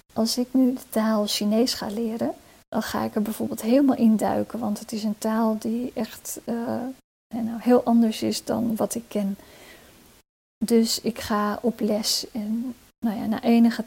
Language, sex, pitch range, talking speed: Dutch, female, 215-245 Hz, 170 wpm